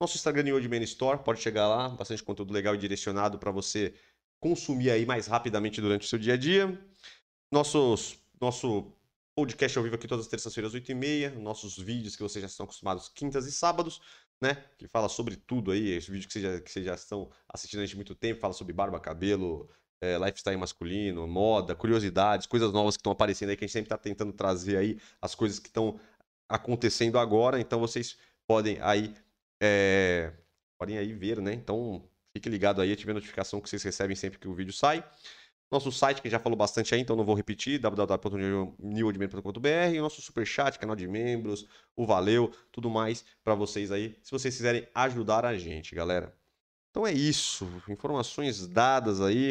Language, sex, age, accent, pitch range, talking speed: Portuguese, male, 30-49, Brazilian, 100-125 Hz, 190 wpm